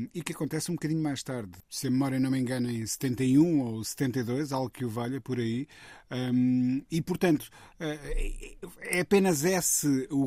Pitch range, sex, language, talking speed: 120-145 Hz, male, Portuguese, 170 wpm